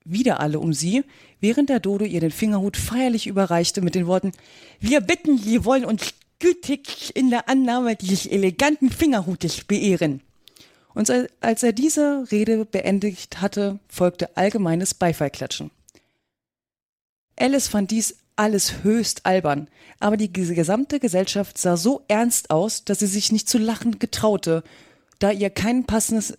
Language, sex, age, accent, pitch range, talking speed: German, female, 30-49, German, 180-235 Hz, 150 wpm